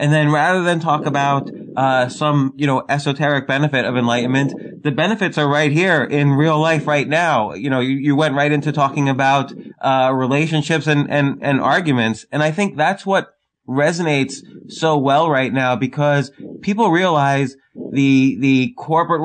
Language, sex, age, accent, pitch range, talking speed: English, male, 20-39, American, 130-155 Hz, 170 wpm